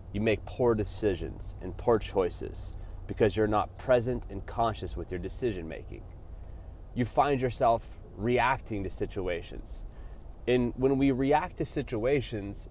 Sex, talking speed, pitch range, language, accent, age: male, 135 wpm, 95-115 Hz, English, American, 30-49